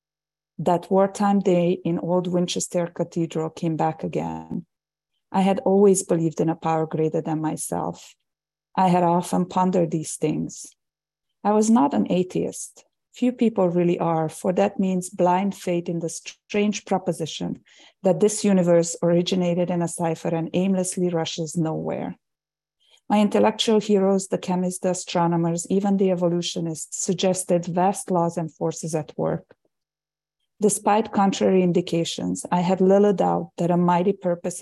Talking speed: 145 wpm